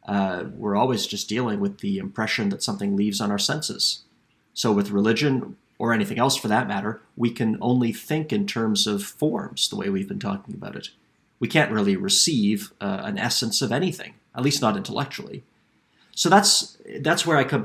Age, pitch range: 30-49, 105-145 Hz